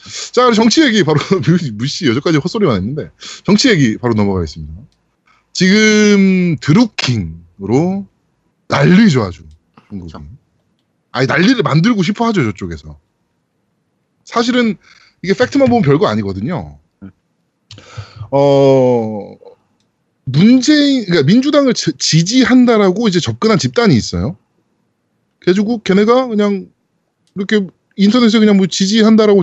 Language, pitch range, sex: Korean, 135-220 Hz, male